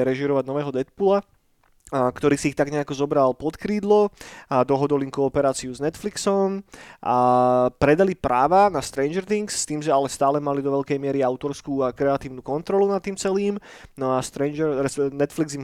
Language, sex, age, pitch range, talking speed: Slovak, male, 20-39, 130-155 Hz, 170 wpm